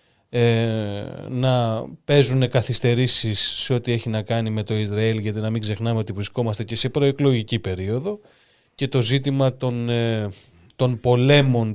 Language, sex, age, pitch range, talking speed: Greek, male, 30-49, 110-135 Hz, 140 wpm